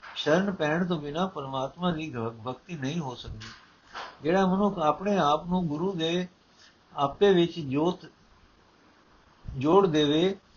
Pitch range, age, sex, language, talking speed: 145-185 Hz, 50-69, male, Punjabi, 125 wpm